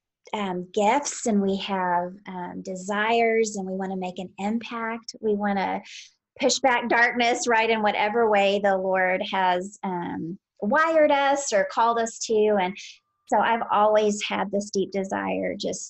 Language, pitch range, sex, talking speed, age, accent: English, 190-215 Hz, female, 160 wpm, 30-49, American